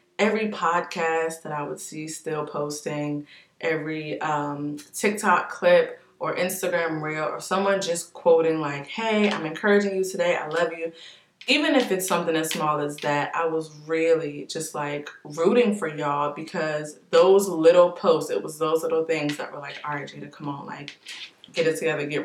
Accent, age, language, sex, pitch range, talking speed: American, 20-39, English, female, 150-180 Hz, 180 wpm